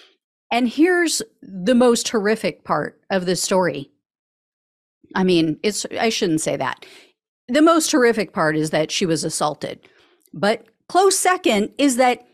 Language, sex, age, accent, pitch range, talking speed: English, female, 40-59, American, 175-255 Hz, 145 wpm